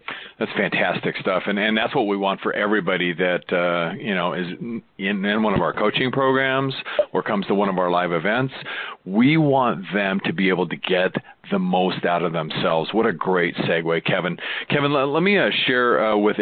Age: 40-59